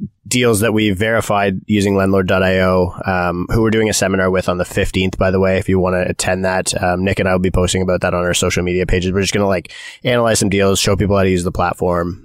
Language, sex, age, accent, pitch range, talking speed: English, male, 20-39, American, 90-100 Hz, 260 wpm